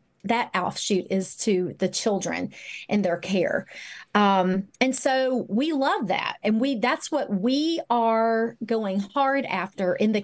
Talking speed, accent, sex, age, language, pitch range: 145 wpm, American, female, 30-49, English, 195-260 Hz